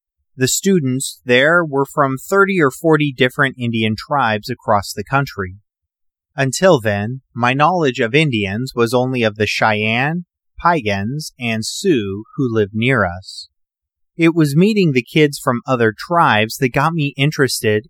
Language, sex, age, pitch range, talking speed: English, male, 30-49, 105-145 Hz, 150 wpm